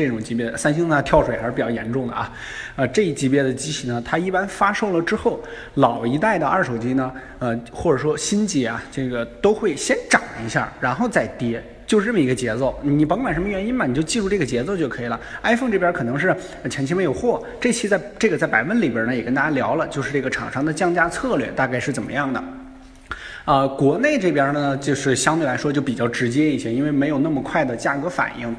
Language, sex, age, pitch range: Chinese, male, 20-39, 120-165 Hz